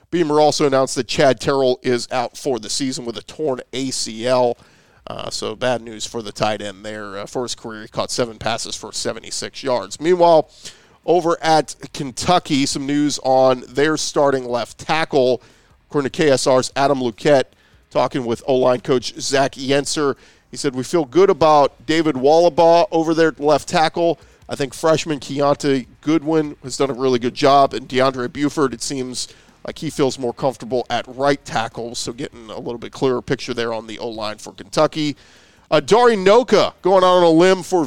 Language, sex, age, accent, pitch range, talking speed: English, male, 40-59, American, 125-160 Hz, 180 wpm